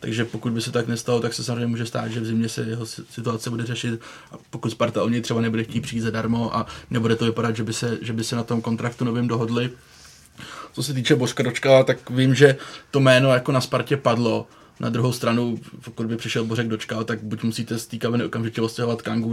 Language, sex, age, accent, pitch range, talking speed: Czech, male, 20-39, native, 115-125 Hz, 225 wpm